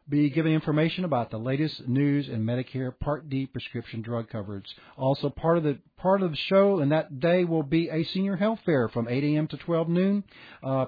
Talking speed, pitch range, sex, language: 210 wpm, 130-155 Hz, male, English